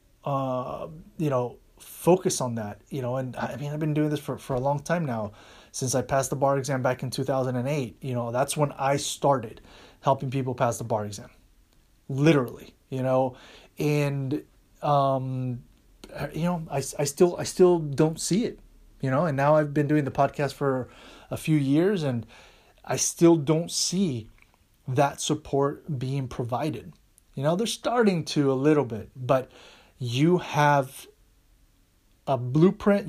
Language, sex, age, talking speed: English, male, 30-49, 165 wpm